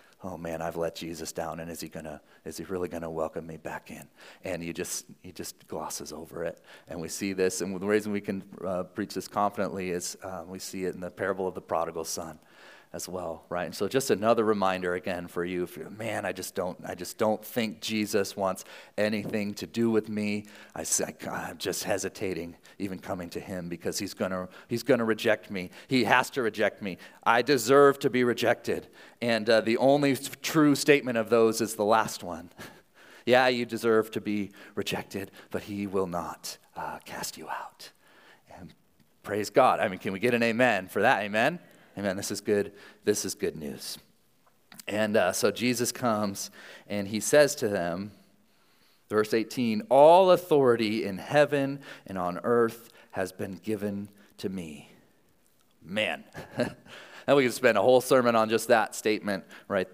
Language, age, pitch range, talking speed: English, 40-59, 95-120 Hz, 190 wpm